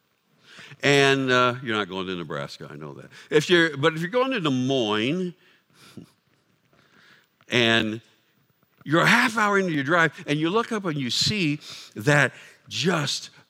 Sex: male